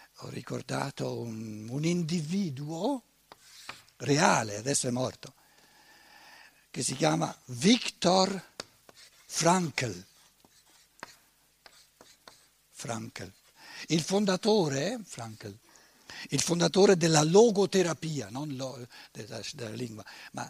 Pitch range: 130-195 Hz